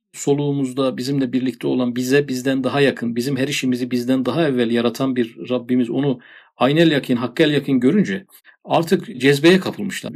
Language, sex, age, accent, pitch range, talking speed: Turkish, male, 50-69, native, 125-170 Hz, 155 wpm